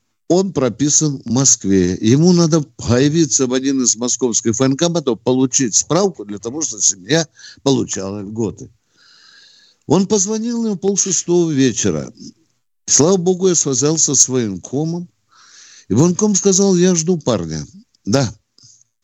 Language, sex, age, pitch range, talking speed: Russian, male, 60-79, 115-165 Hz, 125 wpm